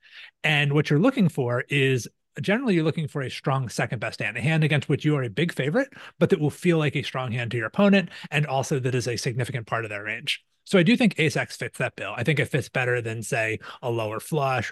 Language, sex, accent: English, male, American